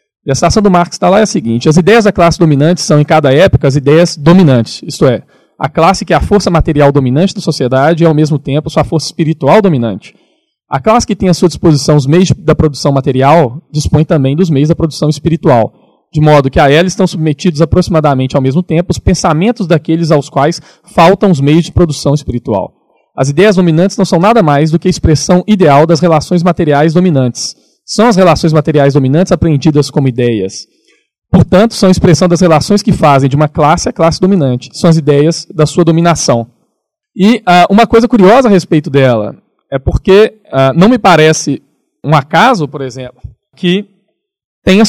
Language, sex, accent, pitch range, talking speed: Portuguese, male, Brazilian, 140-180 Hz, 195 wpm